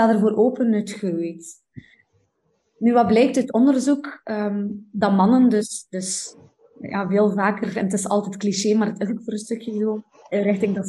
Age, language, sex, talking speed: 20-39, Dutch, female, 175 wpm